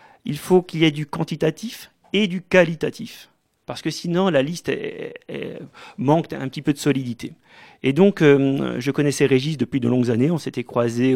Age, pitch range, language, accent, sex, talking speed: 40-59, 140-185 Hz, French, French, male, 195 wpm